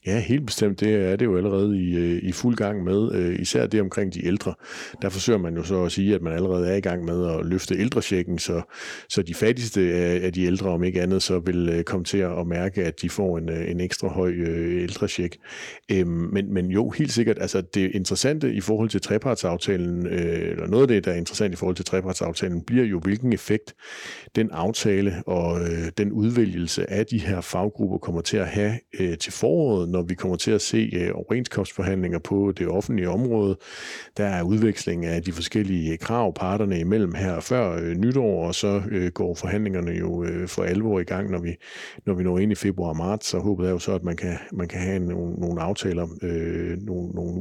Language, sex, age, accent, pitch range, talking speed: Danish, male, 60-79, native, 90-105 Hz, 210 wpm